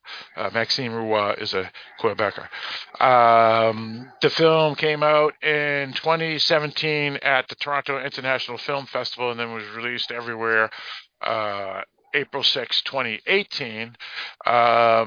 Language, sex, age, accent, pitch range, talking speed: English, male, 50-69, American, 115-140 Hz, 110 wpm